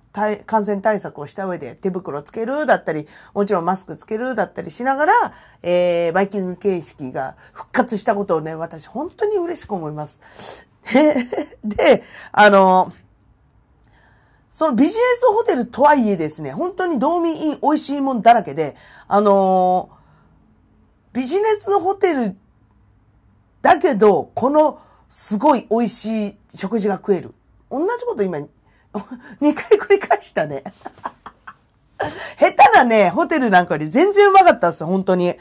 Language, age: Japanese, 40-59